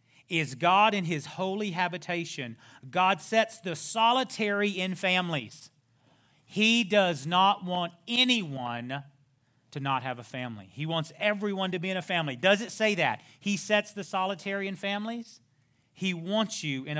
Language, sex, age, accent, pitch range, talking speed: English, male, 40-59, American, 130-175 Hz, 155 wpm